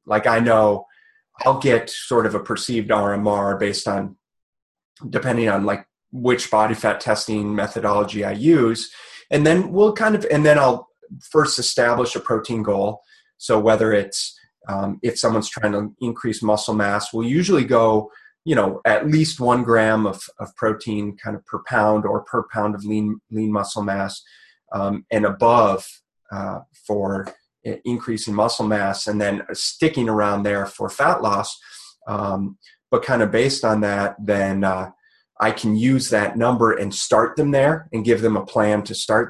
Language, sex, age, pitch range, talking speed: English, male, 30-49, 105-120 Hz, 170 wpm